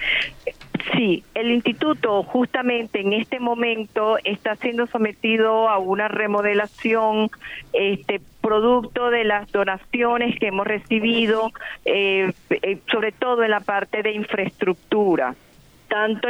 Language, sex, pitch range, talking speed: Spanish, female, 200-235 Hz, 110 wpm